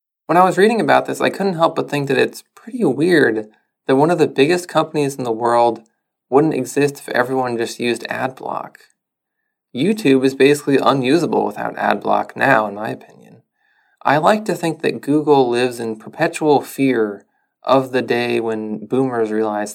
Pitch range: 115-155 Hz